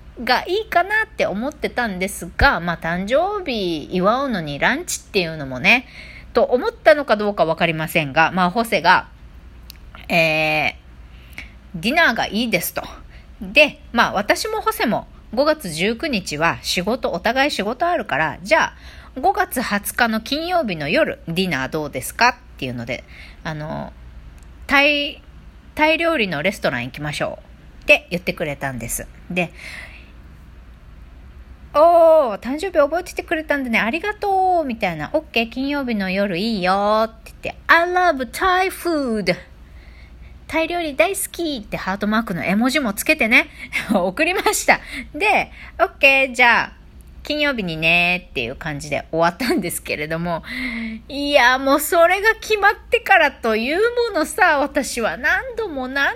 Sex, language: female, Japanese